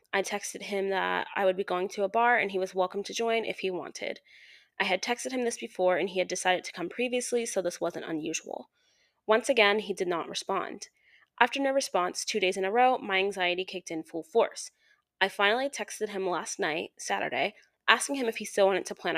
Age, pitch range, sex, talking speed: 20-39, 185-240 Hz, female, 225 wpm